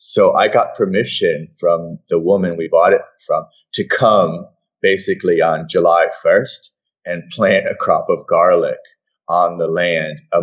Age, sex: 30-49, male